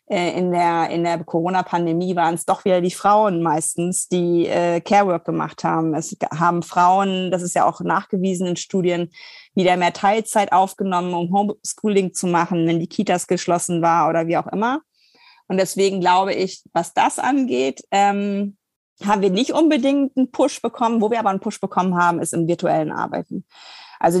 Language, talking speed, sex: German, 175 wpm, female